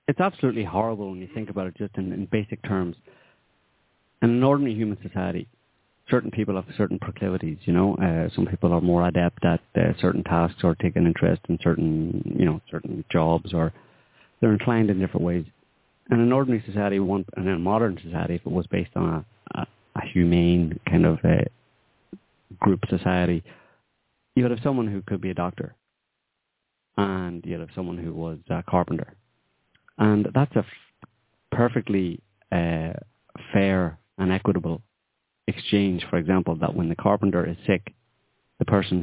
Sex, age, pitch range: male, 30-49, 90-115 Hz